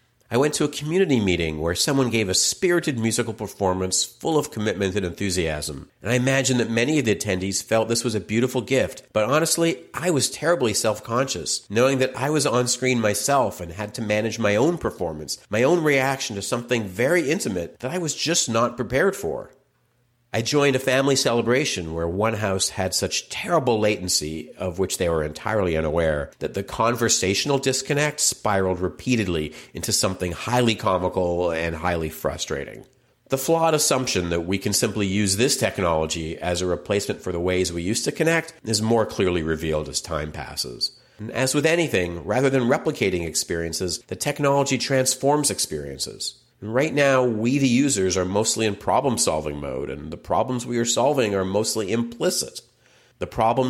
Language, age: English, 50-69